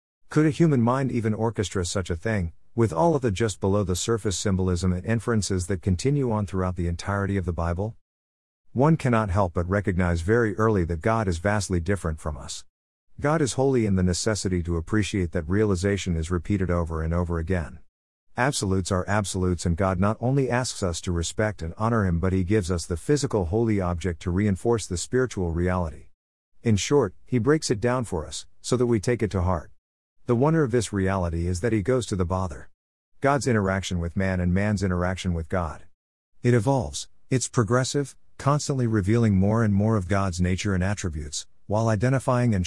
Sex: male